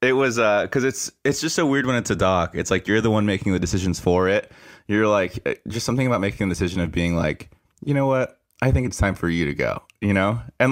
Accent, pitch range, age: American, 90-105 Hz, 20-39